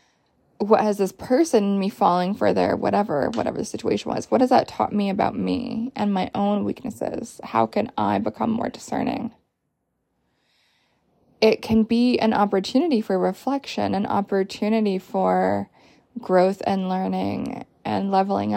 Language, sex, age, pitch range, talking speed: English, female, 20-39, 185-230 Hz, 145 wpm